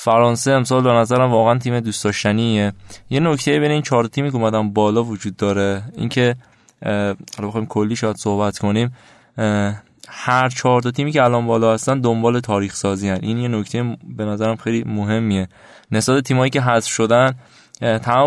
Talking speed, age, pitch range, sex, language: 165 wpm, 20-39, 110-130 Hz, male, Persian